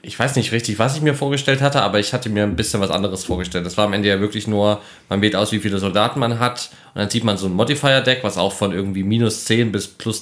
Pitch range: 100-115 Hz